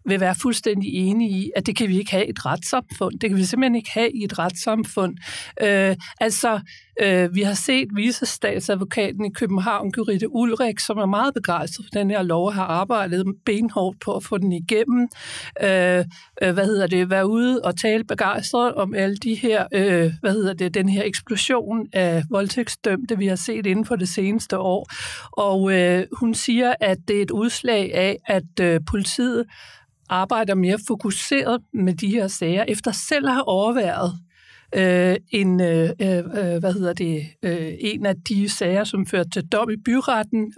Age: 60-79